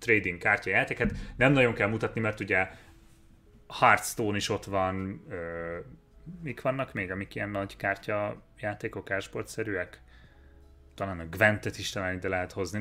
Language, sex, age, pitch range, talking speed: Hungarian, male, 30-49, 95-120 Hz, 135 wpm